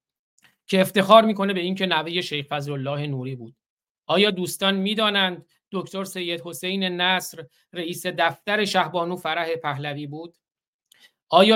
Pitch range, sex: 155-190 Hz, male